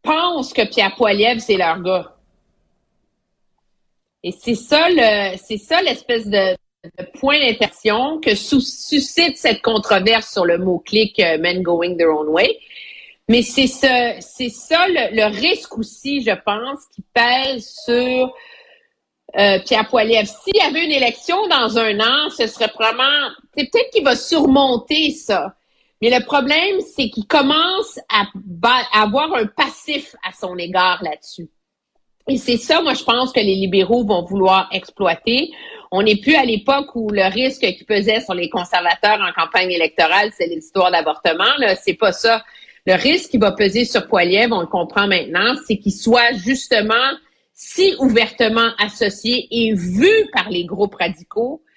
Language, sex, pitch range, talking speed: French, female, 195-275 Hz, 160 wpm